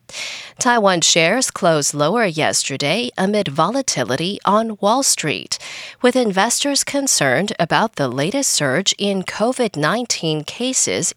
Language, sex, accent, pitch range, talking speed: English, female, American, 170-235 Hz, 105 wpm